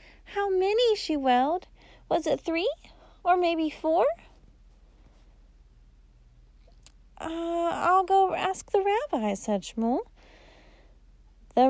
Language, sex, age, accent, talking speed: English, female, 30-49, American, 95 wpm